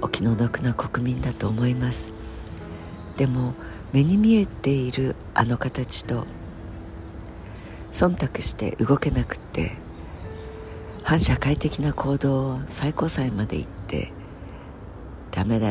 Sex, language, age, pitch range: female, Japanese, 60-79, 90-130 Hz